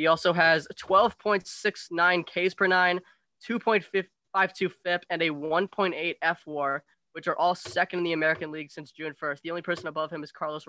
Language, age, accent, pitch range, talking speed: English, 10-29, American, 145-180 Hz, 175 wpm